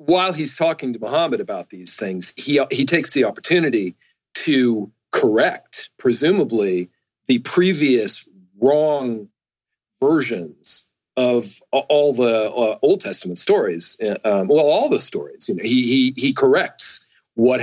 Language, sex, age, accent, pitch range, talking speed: English, male, 40-59, American, 115-165 Hz, 130 wpm